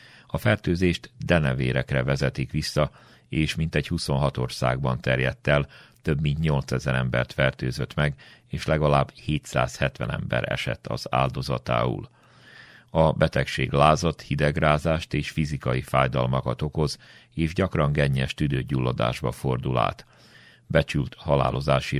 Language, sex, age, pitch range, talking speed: Hungarian, male, 40-59, 65-75 Hz, 110 wpm